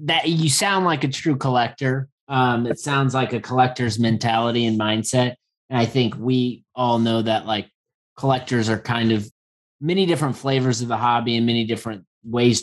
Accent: American